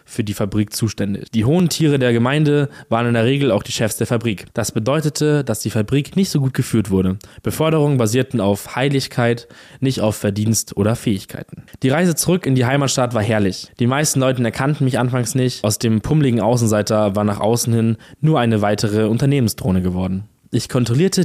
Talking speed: 190 wpm